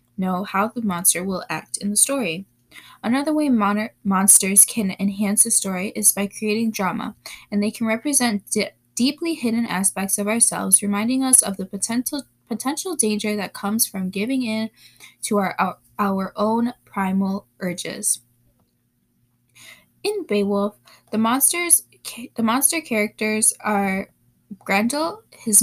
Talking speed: 145 wpm